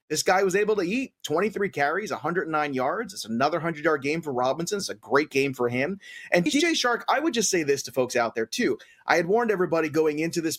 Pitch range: 130-165 Hz